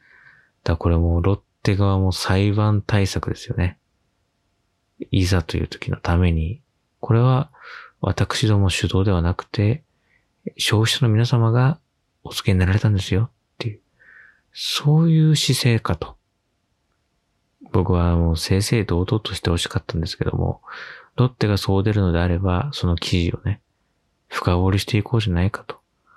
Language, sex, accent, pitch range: Japanese, male, native, 95-120 Hz